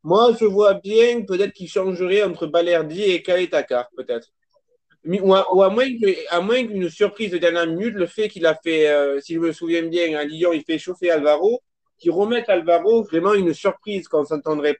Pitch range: 165-210 Hz